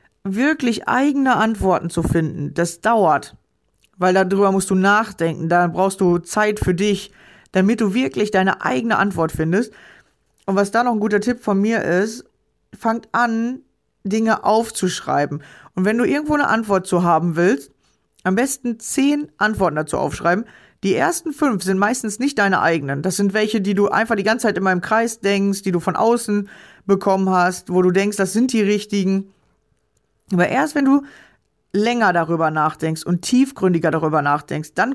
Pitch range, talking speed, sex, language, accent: 185-225 Hz, 170 wpm, female, German, German